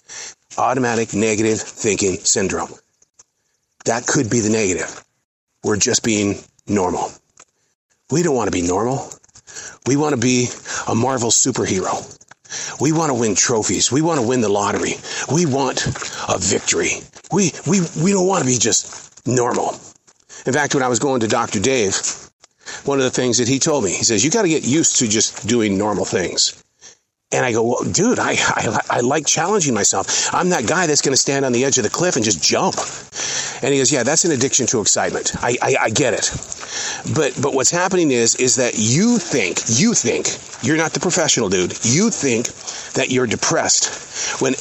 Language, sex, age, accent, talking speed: English, male, 40-59, American, 190 wpm